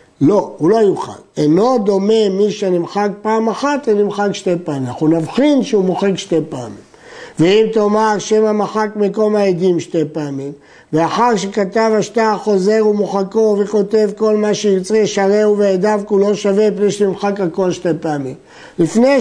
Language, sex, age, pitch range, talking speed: Hebrew, male, 60-79, 180-225 Hz, 155 wpm